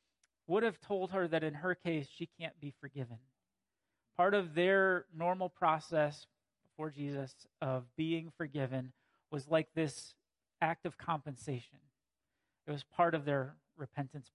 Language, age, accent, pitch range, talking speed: English, 30-49, American, 145-180 Hz, 140 wpm